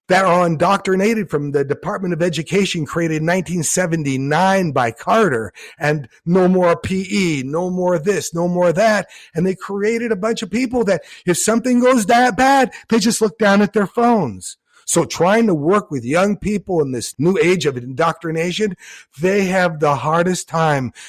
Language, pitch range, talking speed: English, 160-215 Hz, 175 wpm